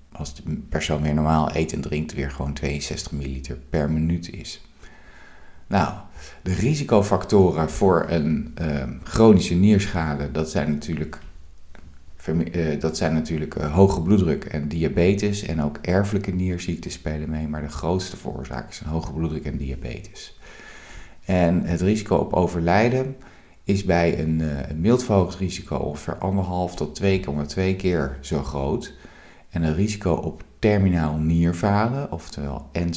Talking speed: 140 wpm